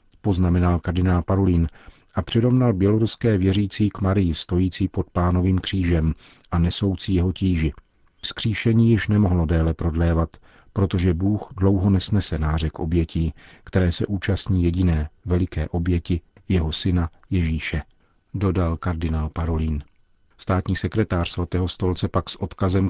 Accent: native